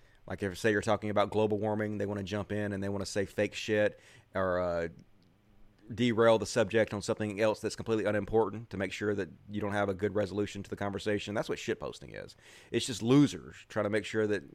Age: 30-49